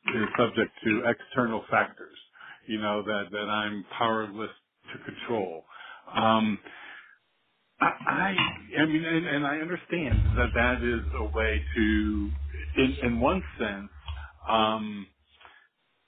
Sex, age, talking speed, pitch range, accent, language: male, 50-69, 125 wpm, 100-125 Hz, American, English